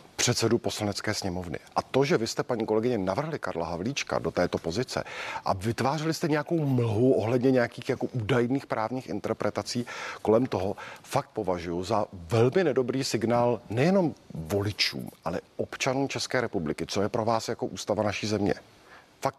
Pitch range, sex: 105-135 Hz, male